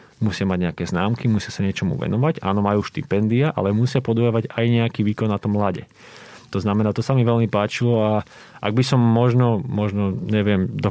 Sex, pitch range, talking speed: male, 95-115 Hz, 195 wpm